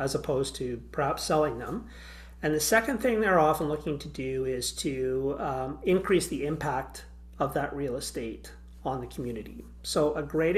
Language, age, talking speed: English, 40-59, 175 wpm